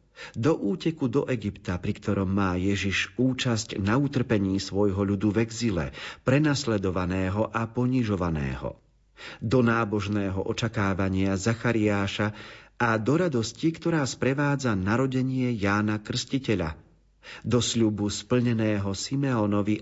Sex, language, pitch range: male, Slovak, 105-130 Hz